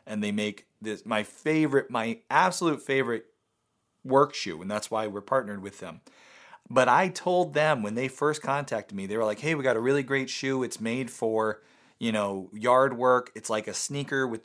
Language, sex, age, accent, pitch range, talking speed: English, male, 30-49, American, 110-155 Hz, 205 wpm